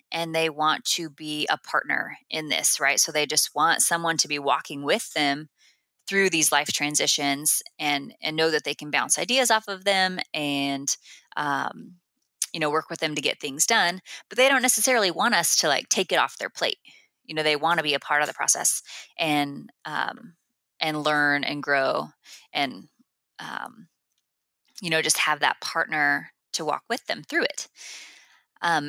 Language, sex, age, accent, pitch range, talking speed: English, female, 20-39, American, 150-175 Hz, 190 wpm